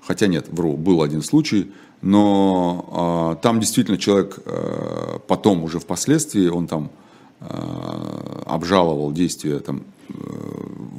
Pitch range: 85-110 Hz